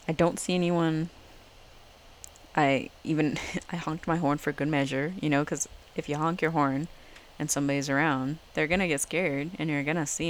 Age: 10-29